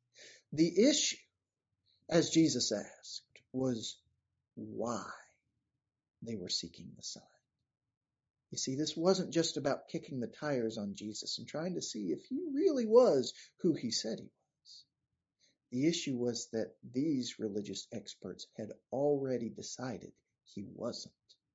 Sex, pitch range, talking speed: male, 115-150 Hz, 135 wpm